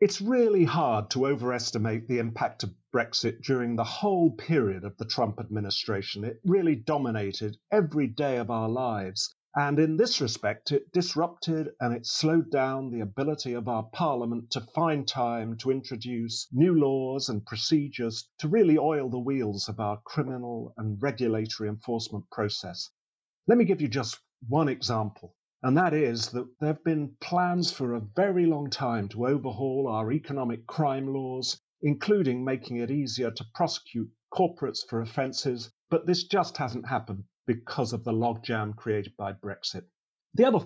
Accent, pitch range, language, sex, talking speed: British, 115-150 Hz, English, male, 160 wpm